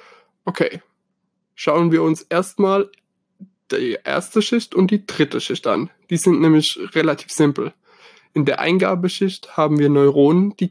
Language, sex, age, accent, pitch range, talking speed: German, male, 20-39, German, 150-195 Hz, 140 wpm